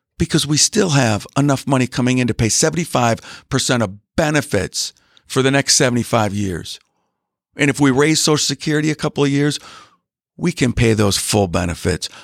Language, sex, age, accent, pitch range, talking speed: English, male, 50-69, American, 100-140 Hz, 165 wpm